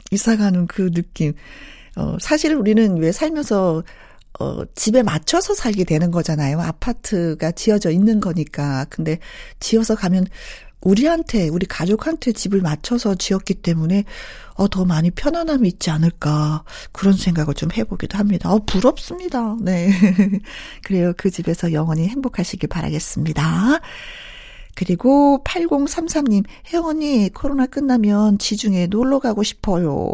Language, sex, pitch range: Korean, female, 175-265 Hz